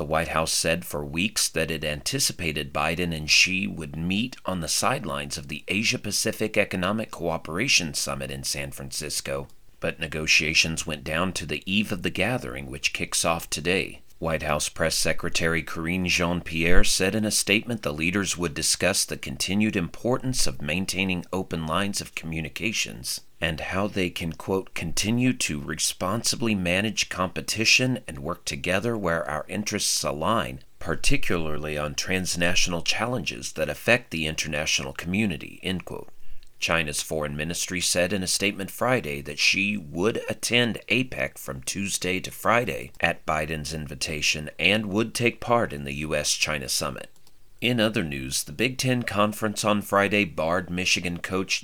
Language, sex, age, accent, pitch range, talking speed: English, male, 40-59, American, 75-105 Hz, 150 wpm